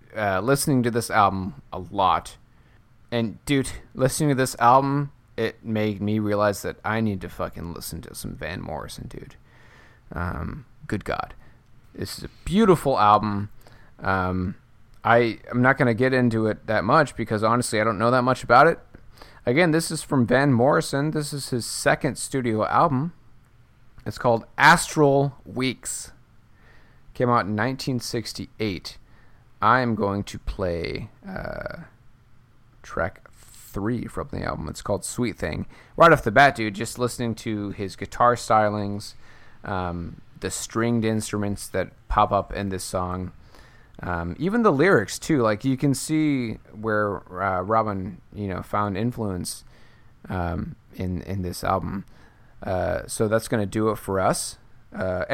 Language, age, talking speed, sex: English, 30-49, 155 wpm, male